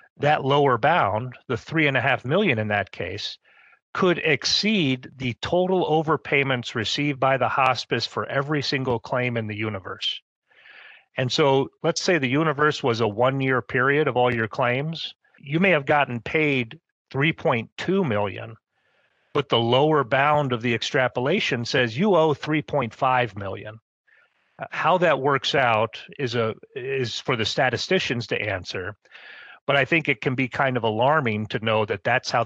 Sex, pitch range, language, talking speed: male, 120-155 Hz, English, 160 wpm